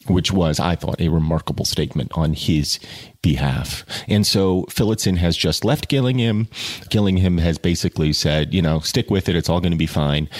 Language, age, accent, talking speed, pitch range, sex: English, 40-59, American, 185 wpm, 80-105 Hz, male